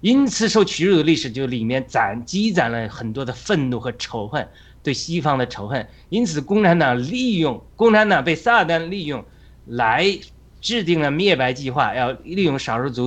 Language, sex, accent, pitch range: Chinese, male, native, 120-175 Hz